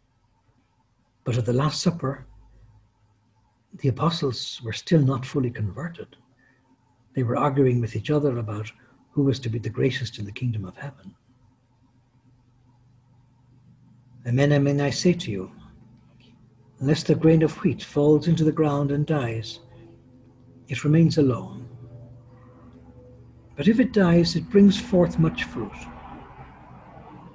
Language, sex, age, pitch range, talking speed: English, male, 60-79, 115-155 Hz, 130 wpm